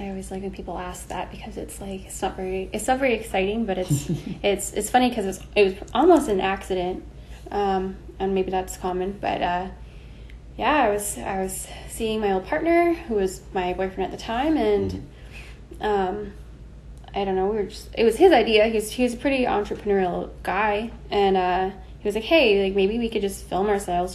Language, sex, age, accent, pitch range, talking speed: English, female, 10-29, American, 185-210 Hz, 210 wpm